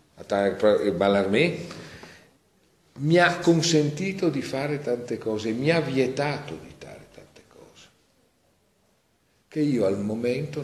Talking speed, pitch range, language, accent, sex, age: 105 wpm, 95-130 Hz, Italian, native, male, 50-69